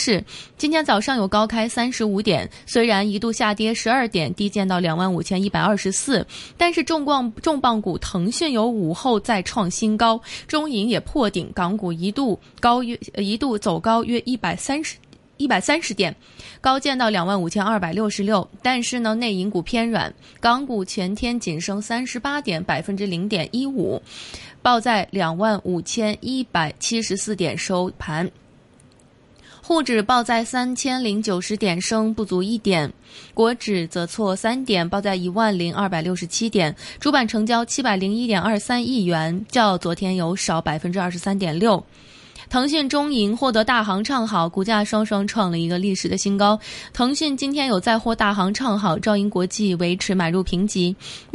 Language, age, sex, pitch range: Chinese, 20-39, female, 185-240 Hz